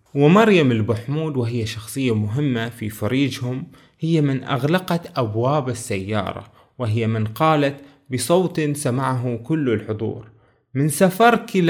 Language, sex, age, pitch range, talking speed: Arabic, male, 20-39, 130-175 Hz, 110 wpm